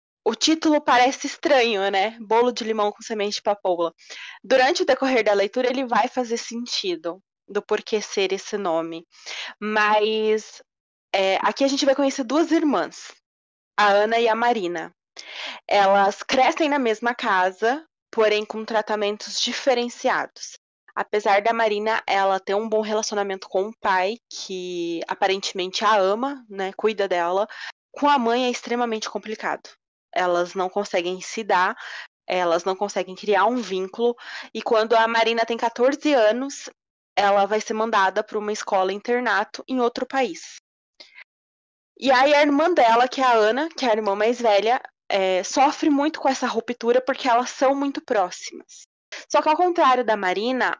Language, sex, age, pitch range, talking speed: Portuguese, female, 20-39, 200-250 Hz, 160 wpm